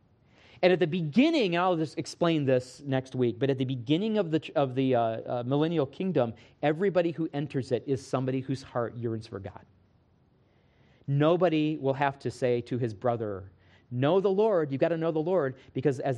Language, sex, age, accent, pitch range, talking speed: English, male, 40-59, American, 115-160 Hz, 195 wpm